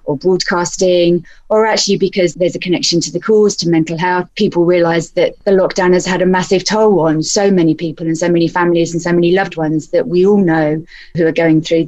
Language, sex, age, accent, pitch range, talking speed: English, female, 30-49, British, 165-195 Hz, 225 wpm